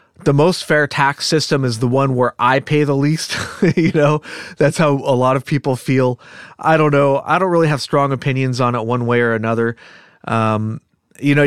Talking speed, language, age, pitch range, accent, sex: 210 wpm, English, 30-49, 115-140 Hz, American, male